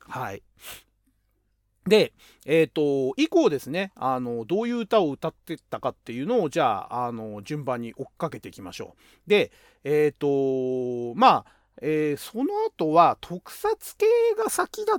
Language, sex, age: Japanese, male, 40-59